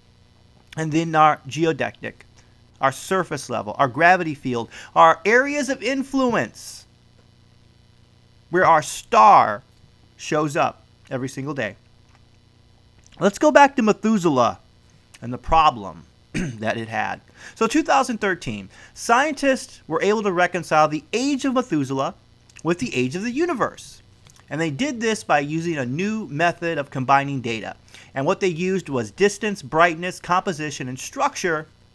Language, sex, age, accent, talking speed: English, male, 30-49, American, 135 wpm